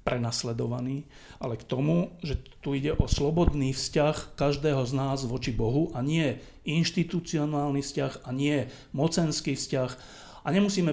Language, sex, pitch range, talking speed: Slovak, male, 120-145 Hz, 135 wpm